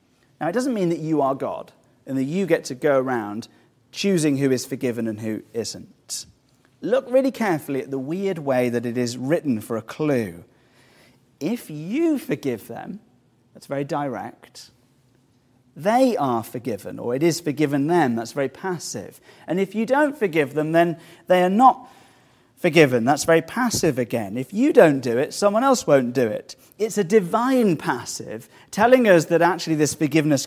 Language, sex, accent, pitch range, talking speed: English, male, British, 125-180 Hz, 175 wpm